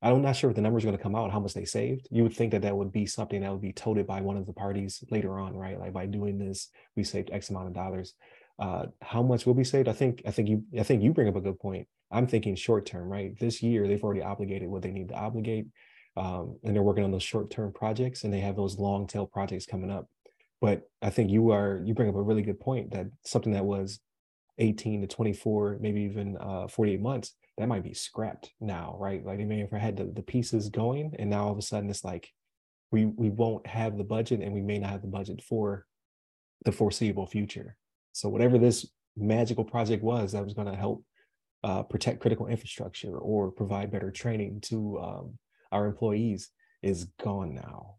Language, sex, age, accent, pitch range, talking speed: English, male, 30-49, American, 100-115 Hz, 235 wpm